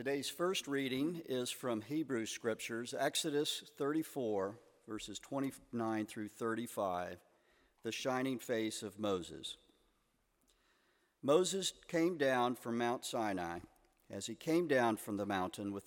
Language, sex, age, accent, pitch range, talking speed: English, male, 50-69, American, 105-135 Hz, 120 wpm